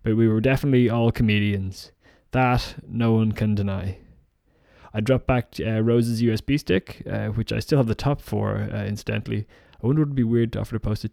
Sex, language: male, English